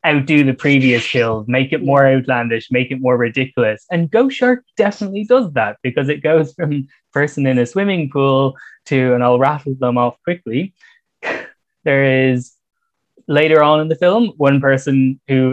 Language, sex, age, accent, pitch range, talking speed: English, male, 10-29, Irish, 130-180 Hz, 170 wpm